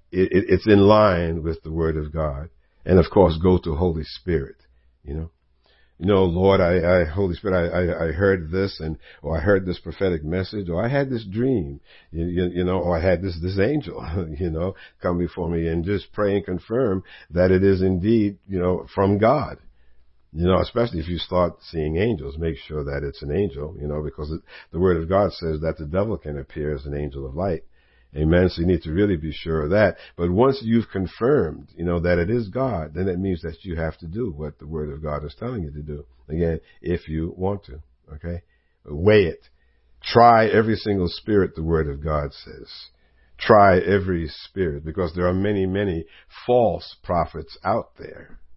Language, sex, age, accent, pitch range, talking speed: English, male, 60-79, American, 75-95 Hz, 210 wpm